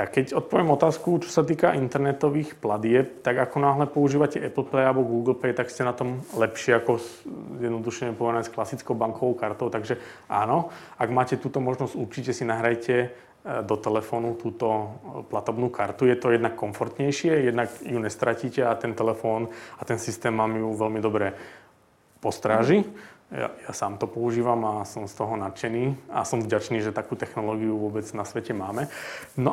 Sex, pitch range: male, 115-135 Hz